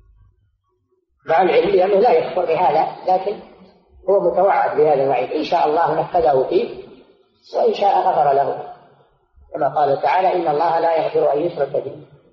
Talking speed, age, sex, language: 145 wpm, 40-59, female, Arabic